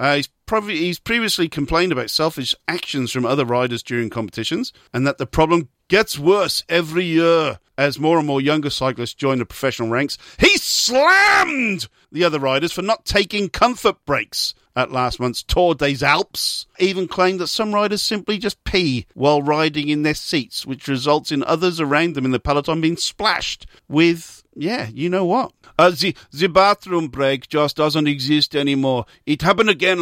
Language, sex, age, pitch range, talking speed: English, male, 50-69, 145-200 Hz, 180 wpm